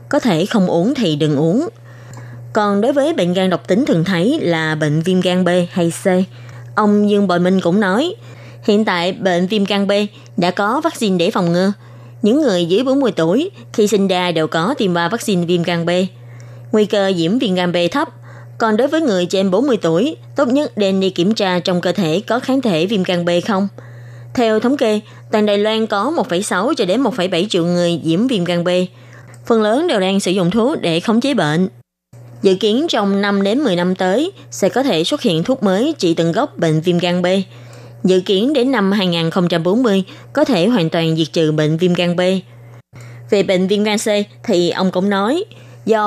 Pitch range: 165-210 Hz